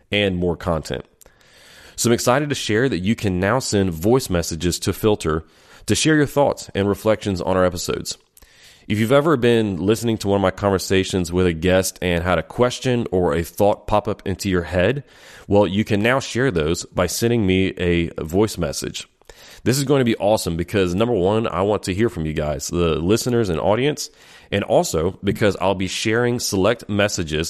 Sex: male